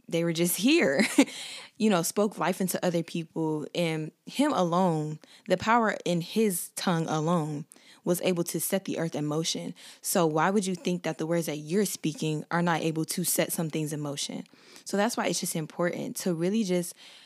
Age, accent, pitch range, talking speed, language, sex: 20-39, American, 160-190 Hz, 200 wpm, English, female